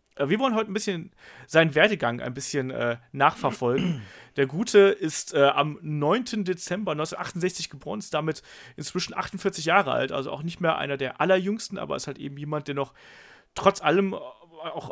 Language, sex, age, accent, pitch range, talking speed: German, male, 30-49, German, 135-165 Hz, 175 wpm